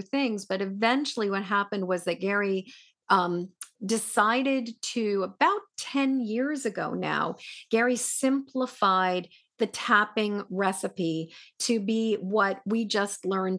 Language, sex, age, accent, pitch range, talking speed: English, female, 40-59, American, 195-245 Hz, 120 wpm